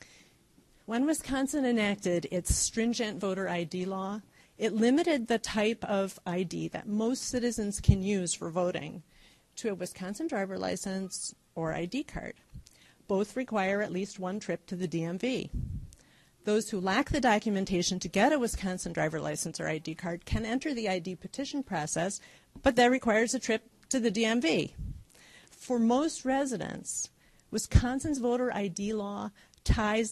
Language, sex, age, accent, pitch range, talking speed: English, female, 50-69, American, 190-250 Hz, 145 wpm